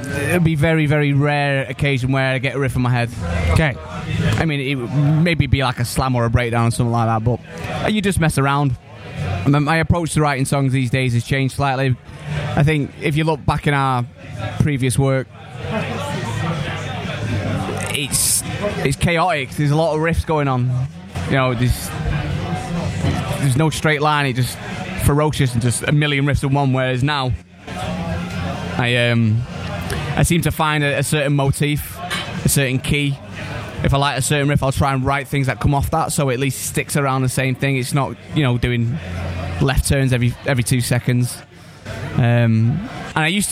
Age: 20-39